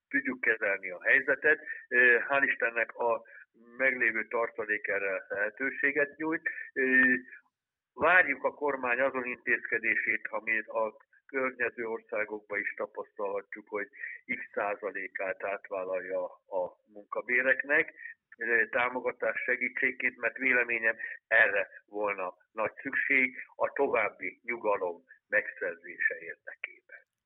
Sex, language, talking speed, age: male, Hungarian, 90 wpm, 60-79